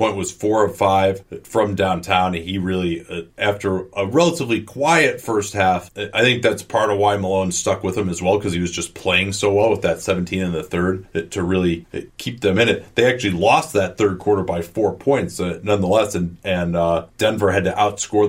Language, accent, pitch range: English, American, 90-105 Hz